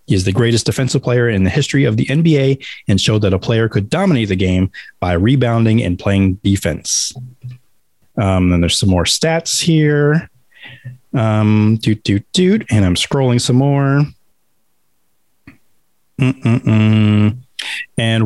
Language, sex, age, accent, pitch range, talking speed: English, male, 30-49, American, 105-130 Hz, 140 wpm